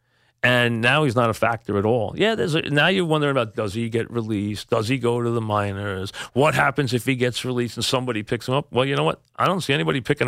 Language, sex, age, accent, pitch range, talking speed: English, male, 40-59, American, 115-135 Hz, 265 wpm